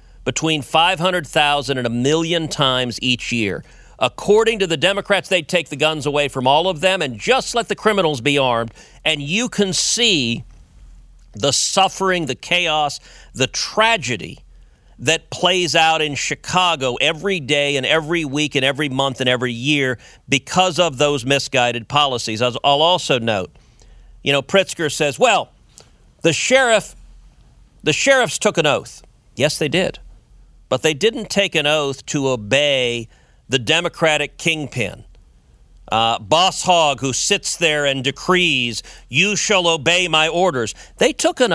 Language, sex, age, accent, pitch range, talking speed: English, male, 40-59, American, 130-175 Hz, 150 wpm